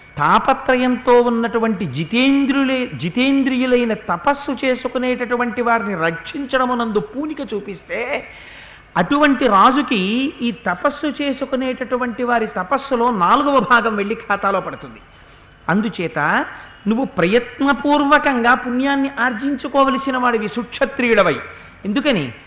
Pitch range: 210-265 Hz